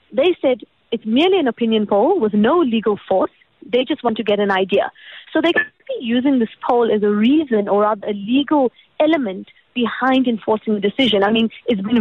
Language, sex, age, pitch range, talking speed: English, female, 20-39, 220-315 Hz, 205 wpm